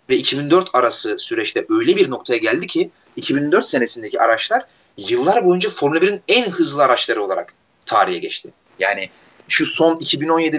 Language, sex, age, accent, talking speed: Turkish, male, 30-49, native, 145 wpm